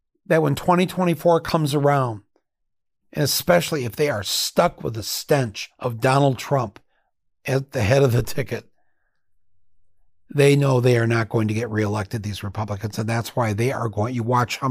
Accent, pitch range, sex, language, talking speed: American, 115-165 Hz, male, English, 170 wpm